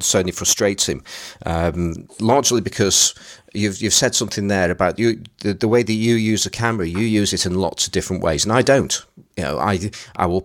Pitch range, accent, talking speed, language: 90-110 Hz, British, 210 wpm, English